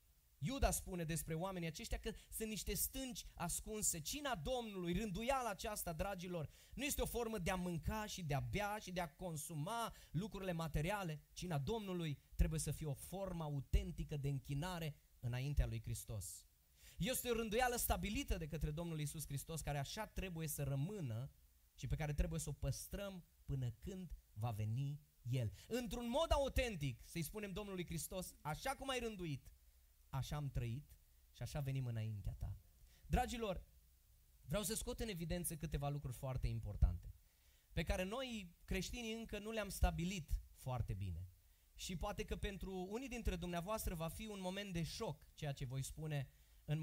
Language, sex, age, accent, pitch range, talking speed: Romanian, male, 20-39, native, 130-205 Hz, 165 wpm